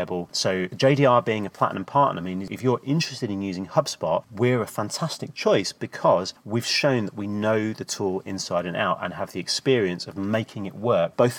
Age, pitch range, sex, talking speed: 30-49, 95-125 Hz, male, 200 wpm